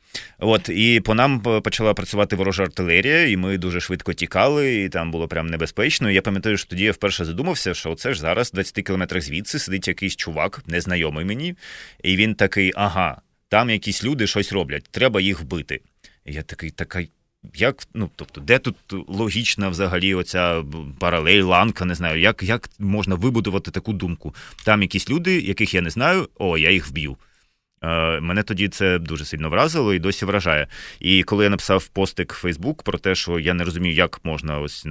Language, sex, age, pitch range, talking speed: Ukrainian, male, 30-49, 80-100 Hz, 185 wpm